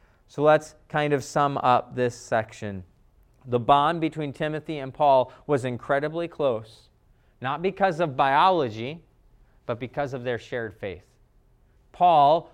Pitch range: 120-155 Hz